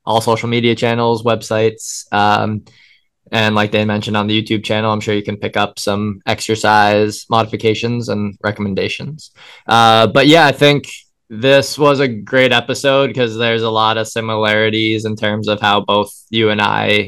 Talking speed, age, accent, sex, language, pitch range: 170 wpm, 20-39, American, male, English, 100-115 Hz